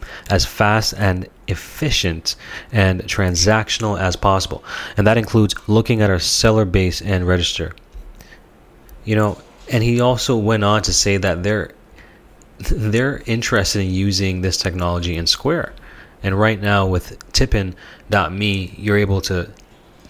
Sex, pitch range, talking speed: male, 95-115 Hz, 135 wpm